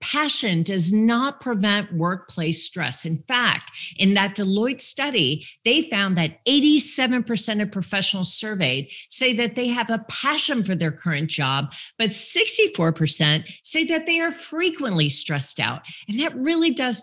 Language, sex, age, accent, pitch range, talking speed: English, female, 40-59, American, 170-245 Hz, 150 wpm